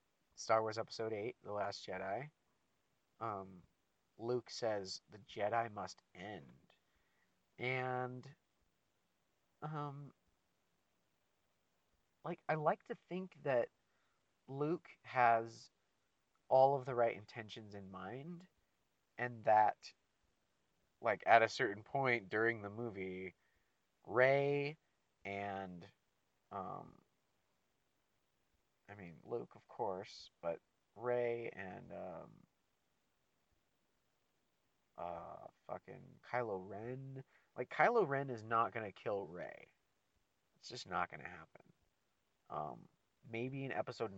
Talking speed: 105 wpm